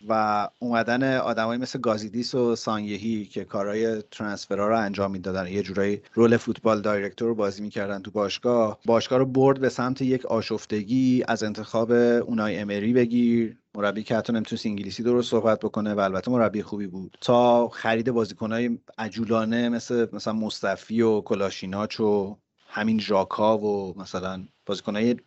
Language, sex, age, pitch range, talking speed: Persian, male, 30-49, 105-125 Hz, 145 wpm